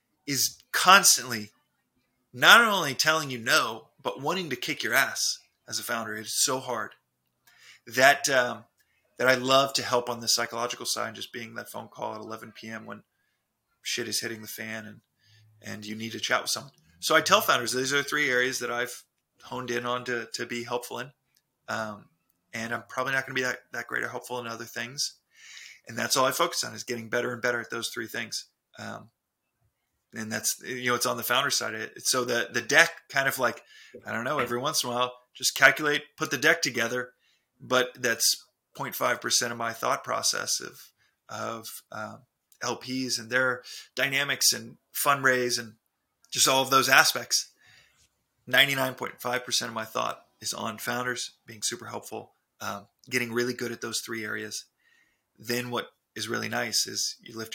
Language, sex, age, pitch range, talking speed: English, male, 30-49, 115-130 Hz, 190 wpm